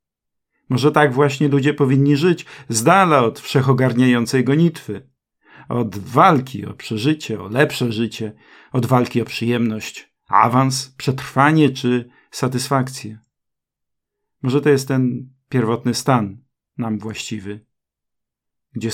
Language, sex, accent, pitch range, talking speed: Czech, male, Polish, 115-140 Hz, 110 wpm